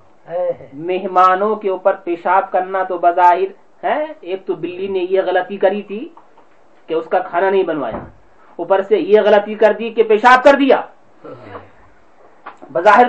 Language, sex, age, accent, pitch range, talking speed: English, male, 40-59, Indian, 240-270 Hz, 150 wpm